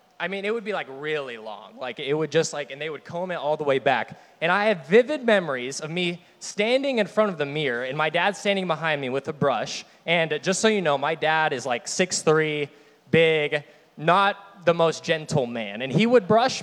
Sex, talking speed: male, 230 wpm